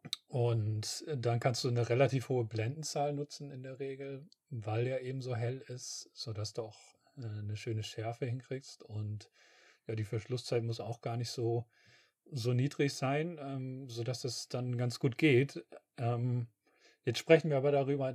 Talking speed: 160 wpm